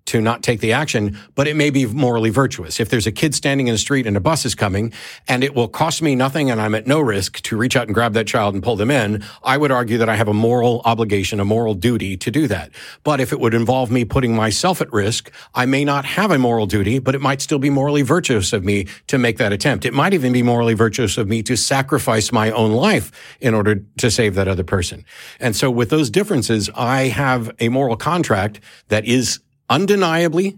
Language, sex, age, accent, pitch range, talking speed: English, male, 50-69, American, 105-135 Hz, 245 wpm